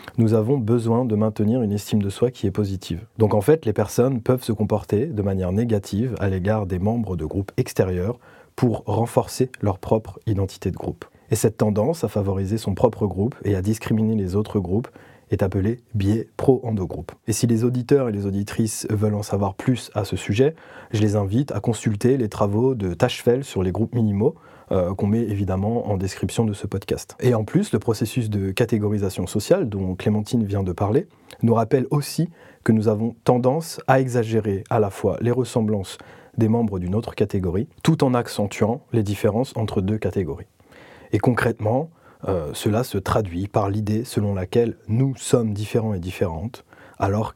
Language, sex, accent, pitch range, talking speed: French, male, French, 100-120 Hz, 185 wpm